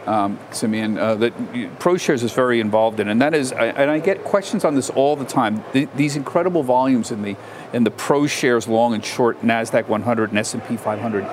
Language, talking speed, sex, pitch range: English, 215 wpm, male, 115-140 Hz